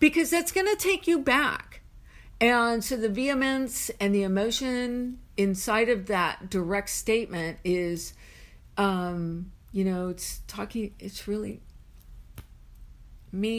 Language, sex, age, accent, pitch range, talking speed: English, female, 50-69, American, 185-235 Hz, 120 wpm